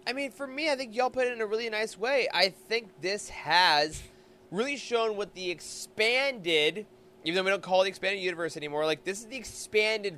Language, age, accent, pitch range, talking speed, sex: English, 20-39, American, 160-215 Hz, 225 wpm, male